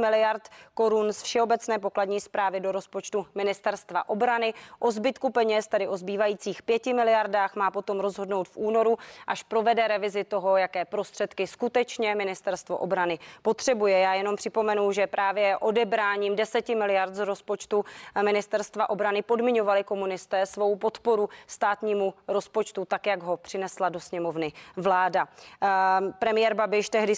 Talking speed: 135 wpm